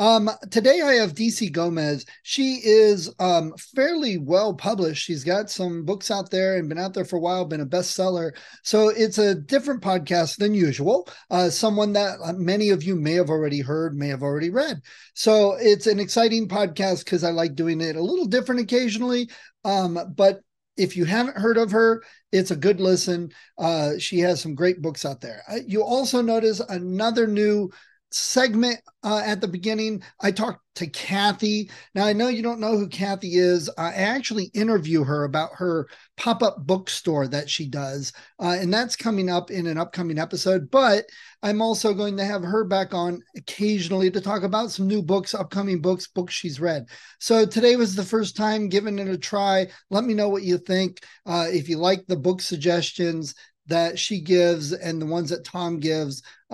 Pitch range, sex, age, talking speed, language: 175-215 Hz, male, 40-59, 190 wpm, English